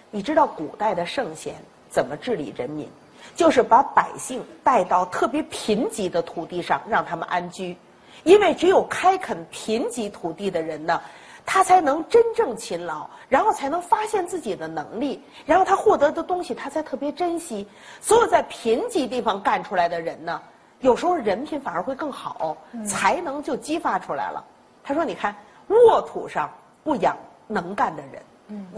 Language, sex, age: Chinese, female, 40-59